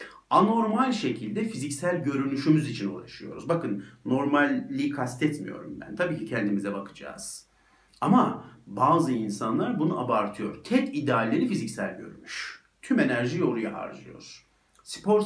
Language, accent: Turkish, native